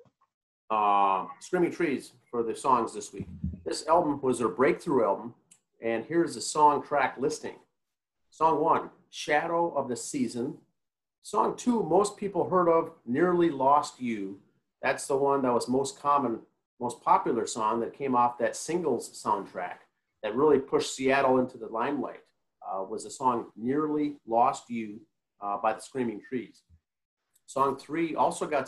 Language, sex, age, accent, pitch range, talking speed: English, male, 40-59, American, 115-150 Hz, 155 wpm